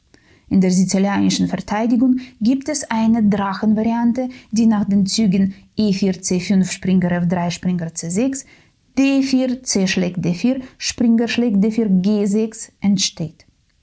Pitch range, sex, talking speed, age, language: 180-225 Hz, female, 115 wpm, 20-39, German